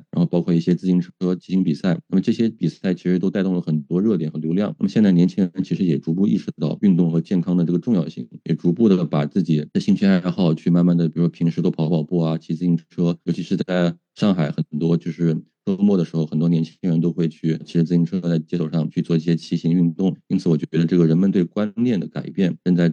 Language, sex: Chinese, male